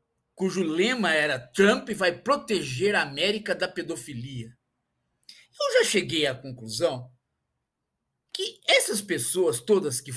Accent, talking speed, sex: Brazilian, 120 wpm, male